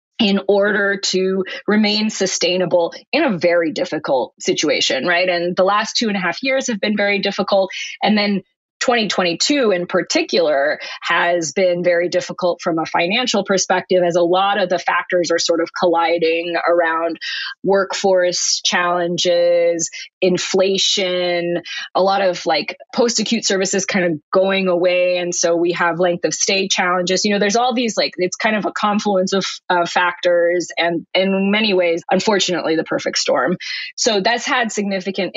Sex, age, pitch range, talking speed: female, 20-39, 175-210 Hz, 160 wpm